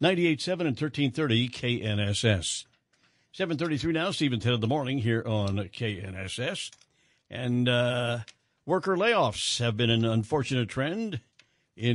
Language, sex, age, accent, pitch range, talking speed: English, male, 60-79, American, 115-155 Hz, 120 wpm